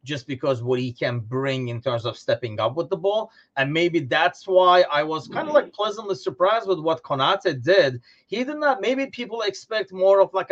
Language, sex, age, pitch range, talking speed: English, male, 30-49, 125-185 Hz, 215 wpm